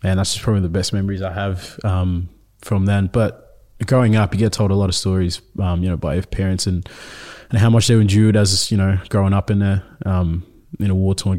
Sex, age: male, 20-39